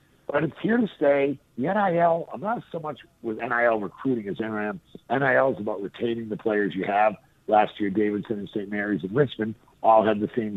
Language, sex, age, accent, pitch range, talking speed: English, male, 50-69, American, 110-150 Hz, 205 wpm